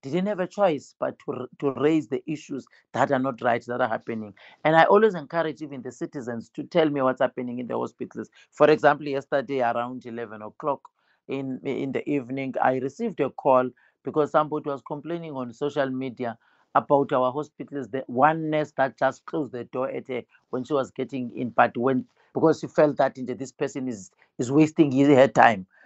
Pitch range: 130-160 Hz